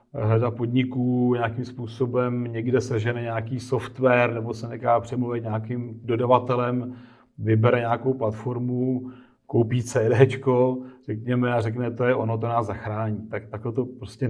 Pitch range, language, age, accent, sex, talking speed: 115-130 Hz, Czech, 40-59, native, male, 135 wpm